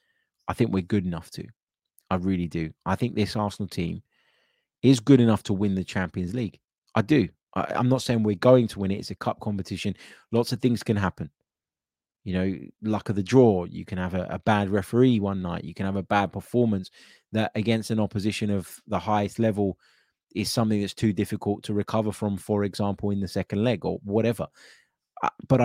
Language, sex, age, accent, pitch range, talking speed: English, male, 20-39, British, 90-110 Hz, 205 wpm